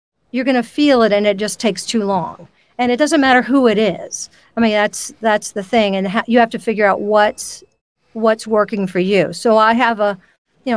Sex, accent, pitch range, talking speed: female, American, 195-235 Hz, 225 wpm